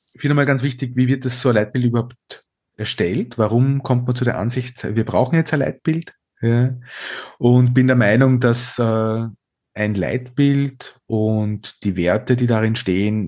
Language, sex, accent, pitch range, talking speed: German, male, Austrian, 105-130 Hz, 165 wpm